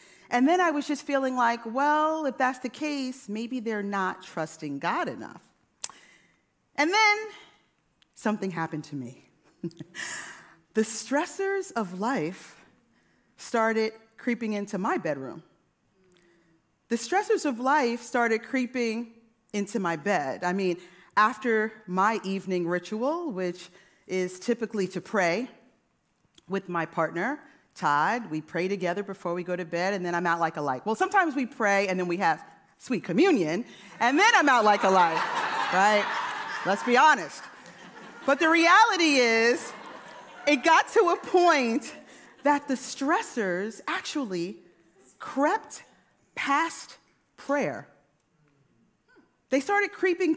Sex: female